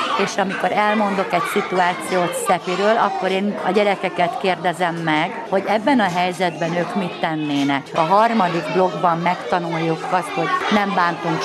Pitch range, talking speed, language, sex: 175-210 Hz, 140 wpm, Hungarian, female